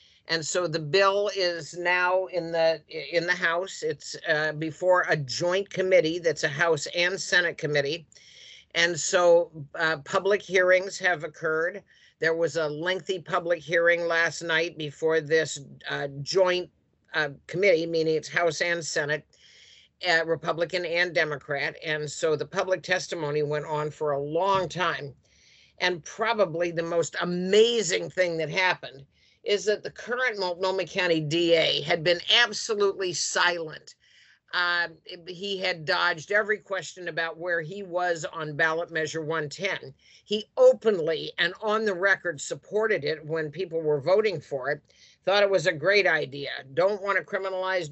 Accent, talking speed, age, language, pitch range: American, 150 wpm, 50-69, English, 160-190 Hz